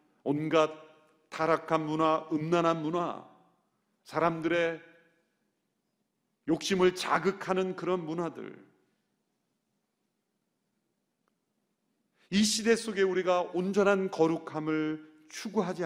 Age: 40-59